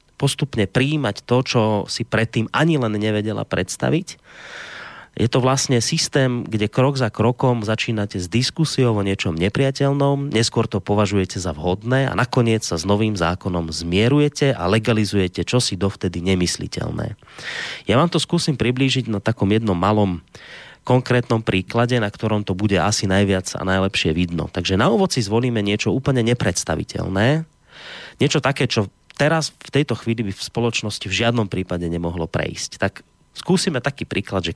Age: 30-49